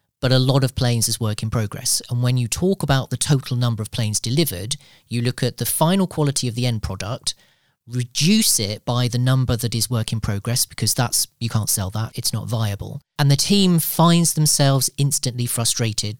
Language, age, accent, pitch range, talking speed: English, 40-59, British, 110-140 Hz, 210 wpm